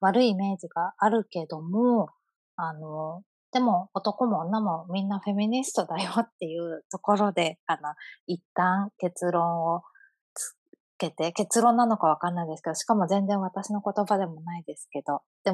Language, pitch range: Japanese, 170-210 Hz